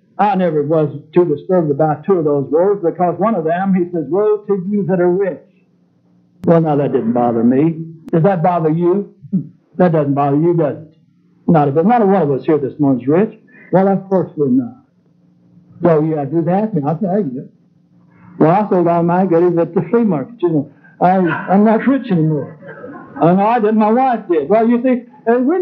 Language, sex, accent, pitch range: English, male, American, 170-240 Hz